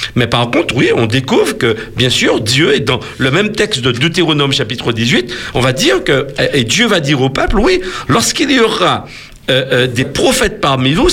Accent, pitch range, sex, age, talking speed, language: French, 125-185 Hz, male, 50-69, 210 wpm, French